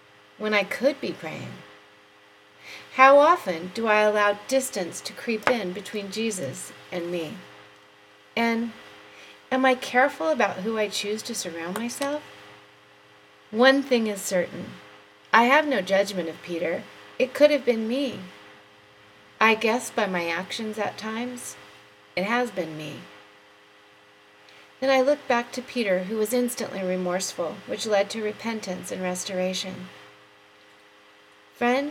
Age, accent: 30-49, American